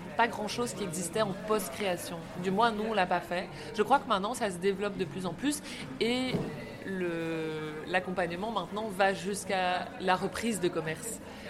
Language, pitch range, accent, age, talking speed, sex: French, 180-210 Hz, French, 20-39, 175 wpm, female